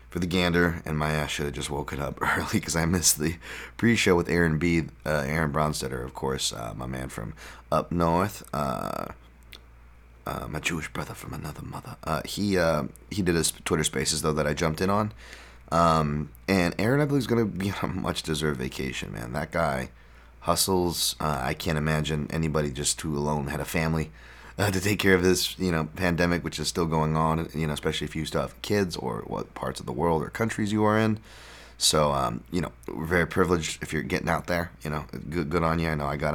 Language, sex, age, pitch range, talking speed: English, male, 30-49, 75-90 Hz, 220 wpm